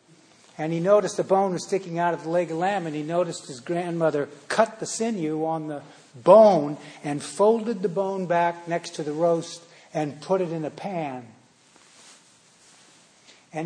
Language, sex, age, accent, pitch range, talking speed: English, male, 60-79, American, 155-180 Hz, 175 wpm